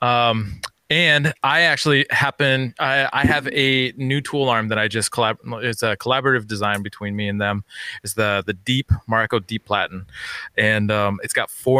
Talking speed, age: 185 wpm, 20-39